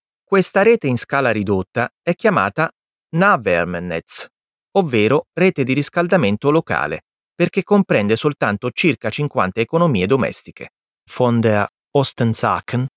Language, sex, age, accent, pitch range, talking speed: Italian, male, 30-49, native, 105-165 Hz, 105 wpm